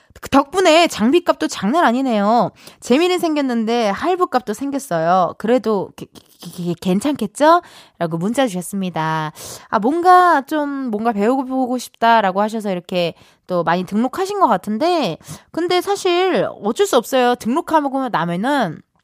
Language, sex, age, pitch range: Korean, female, 20-39, 195-290 Hz